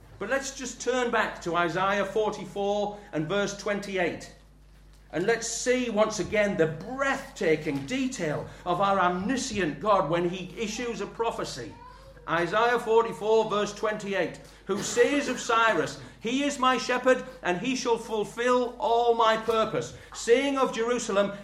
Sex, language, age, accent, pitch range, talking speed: male, English, 40-59, British, 195-255 Hz, 140 wpm